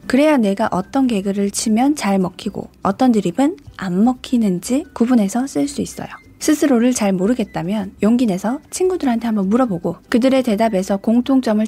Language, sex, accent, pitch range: Korean, female, native, 200-260 Hz